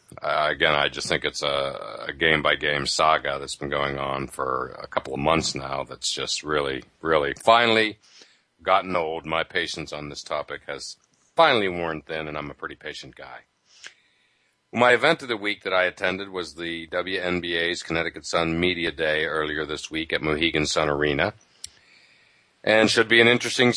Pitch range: 80-100 Hz